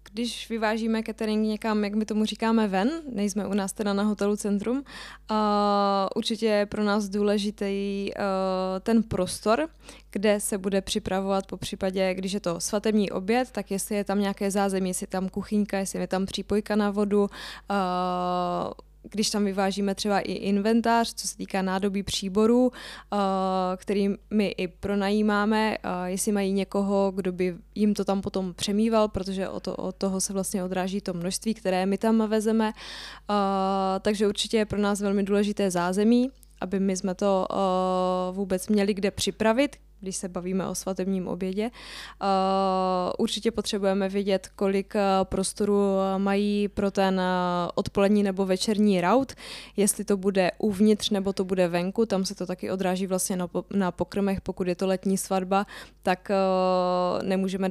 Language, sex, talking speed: Czech, female, 160 wpm